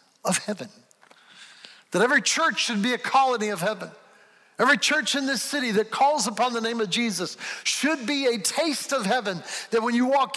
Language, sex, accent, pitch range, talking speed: English, male, American, 190-240 Hz, 190 wpm